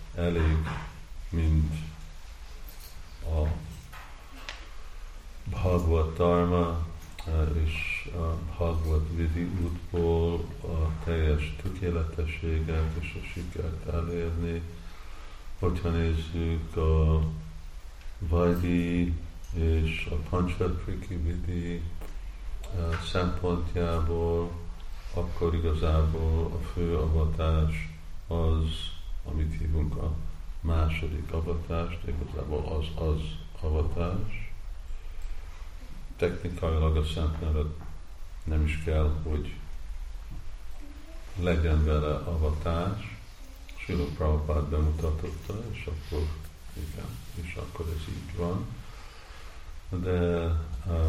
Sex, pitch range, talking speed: male, 75-85 Hz, 70 wpm